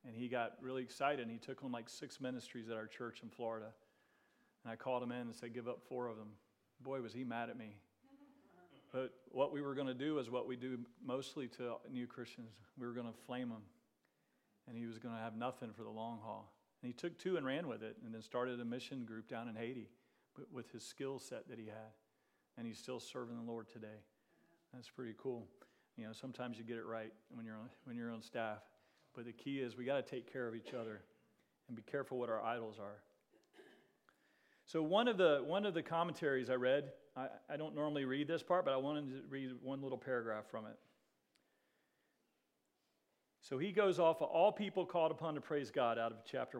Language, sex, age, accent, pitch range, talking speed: English, male, 40-59, American, 115-145 Hz, 225 wpm